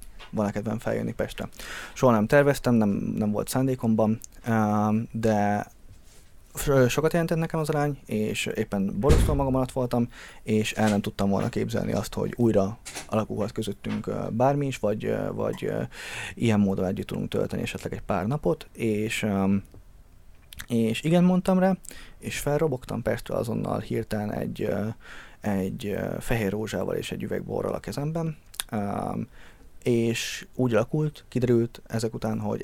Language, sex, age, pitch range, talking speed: Hungarian, male, 20-39, 105-125 Hz, 135 wpm